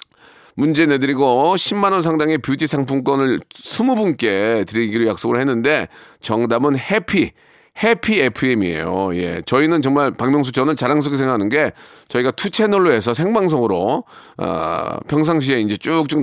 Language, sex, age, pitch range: Korean, male, 40-59, 115-160 Hz